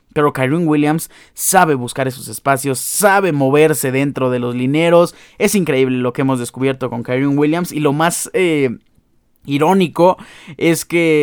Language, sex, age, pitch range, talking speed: Spanish, male, 20-39, 130-170 Hz, 150 wpm